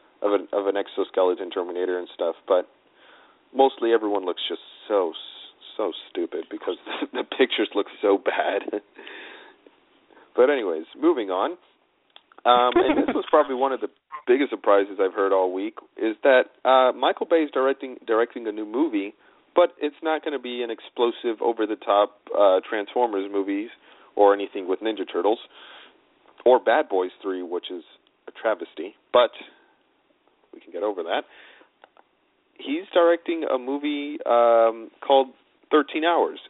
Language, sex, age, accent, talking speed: English, male, 40-59, American, 150 wpm